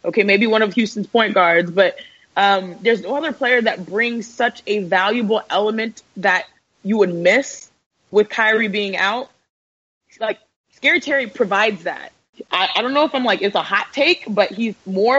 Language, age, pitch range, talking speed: English, 20-39, 195-240 Hz, 180 wpm